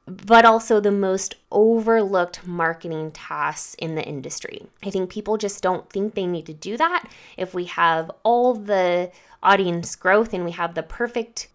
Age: 20-39